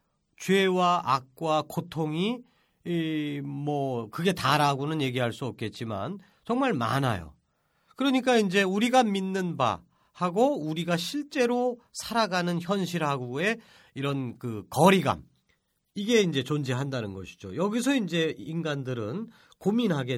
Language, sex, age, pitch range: Korean, male, 40-59, 135-215 Hz